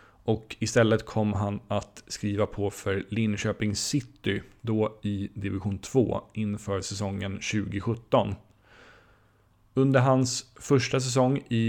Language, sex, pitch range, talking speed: Swedish, male, 105-120 Hz, 115 wpm